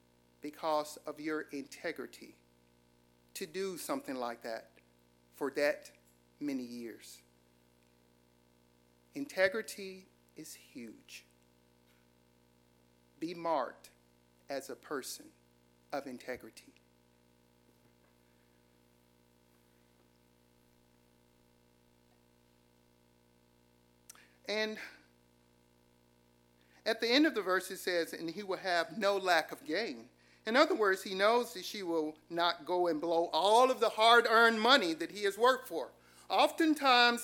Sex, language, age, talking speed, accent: male, English, 50-69, 100 wpm, American